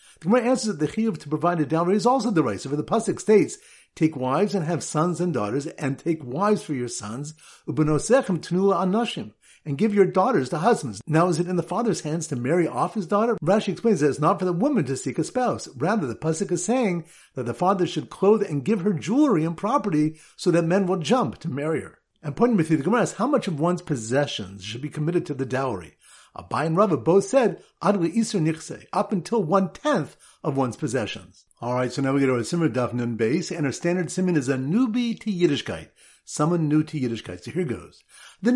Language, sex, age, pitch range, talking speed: English, male, 50-69, 140-210 Hz, 230 wpm